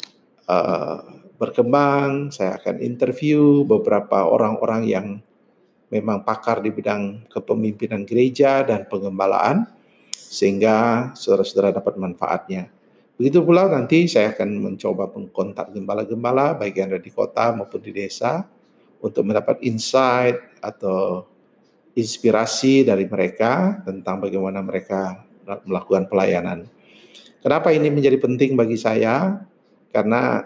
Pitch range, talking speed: 100-130 Hz, 105 wpm